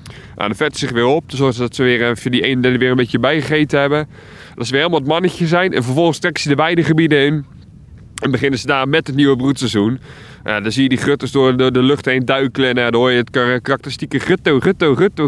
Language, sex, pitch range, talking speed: Dutch, male, 120-145 Hz, 250 wpm